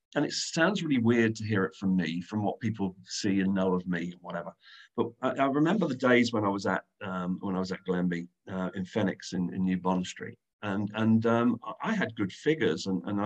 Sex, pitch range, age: male, 100-150 Hz, 40-59